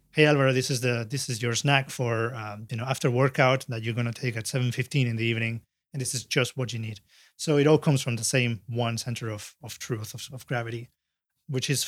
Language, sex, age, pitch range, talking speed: English, male, 30-49, 115-135 Hz, 240 wpm